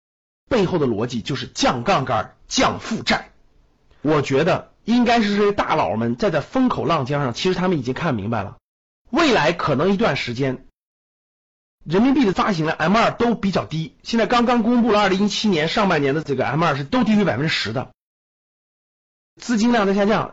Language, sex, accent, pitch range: Chinese, male, native, 150-235 Hz